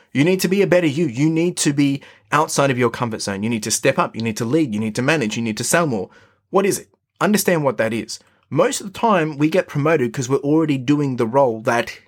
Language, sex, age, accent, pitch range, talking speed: English, male, 20-39, Australian, 115-155 Hz, 275 wpm